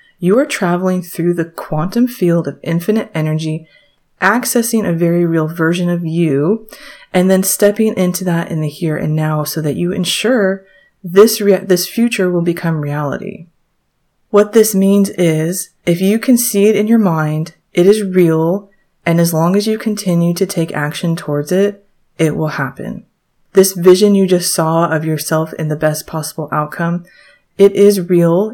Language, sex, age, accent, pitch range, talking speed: English, female, 30-49, American, 160-205 Hz, 170 wpm